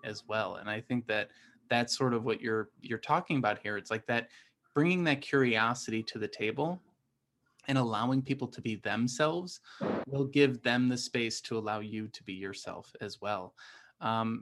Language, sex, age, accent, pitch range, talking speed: English, male, 20-39, American, 110-135 Hz, 185 wpm